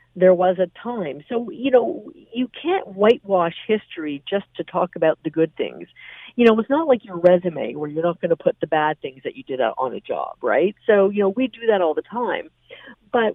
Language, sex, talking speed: English, female, 230 wpm